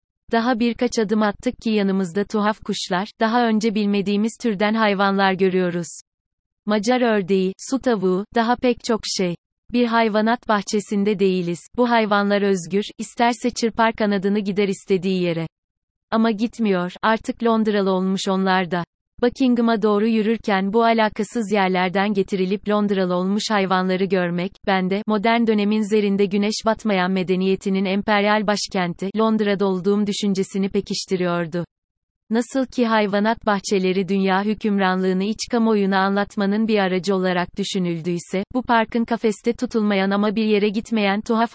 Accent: native